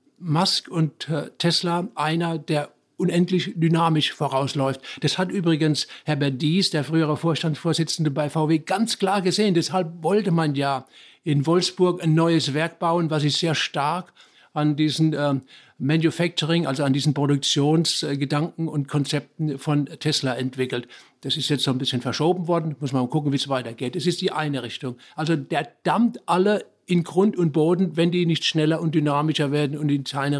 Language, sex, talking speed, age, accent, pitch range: German, male, 170 wpm, 60-79, German, 140-170 Hz